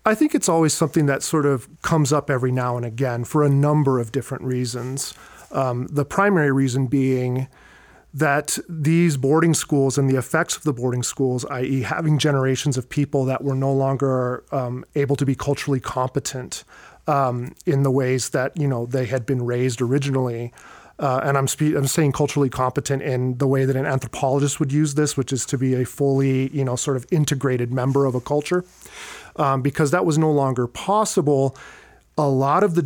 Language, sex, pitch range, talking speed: English, male, 130-145 Hz, 195 wpm